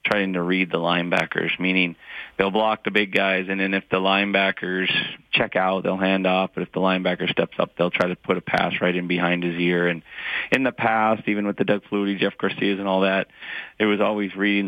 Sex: male